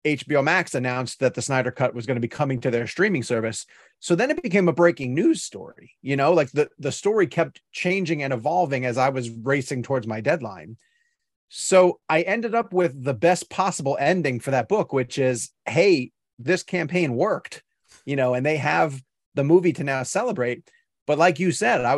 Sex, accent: male, American